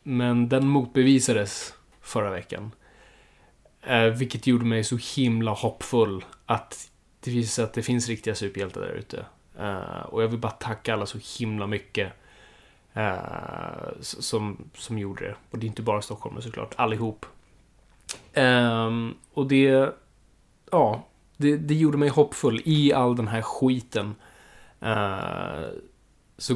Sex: male